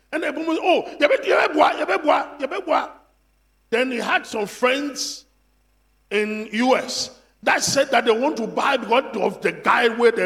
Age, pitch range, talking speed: 50-69, 205-320 Hz, 185 wpm